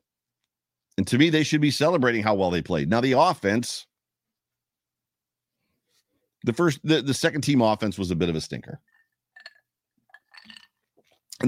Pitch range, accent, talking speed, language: 80-120 Hz, American, 145 wpm, English